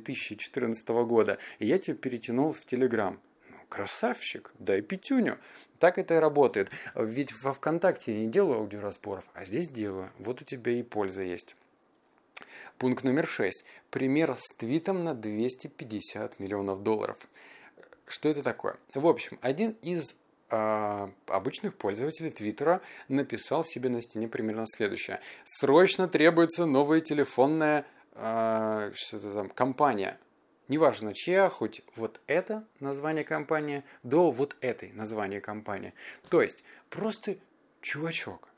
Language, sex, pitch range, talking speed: Russian, male, 110-155 Hz, 120 wpm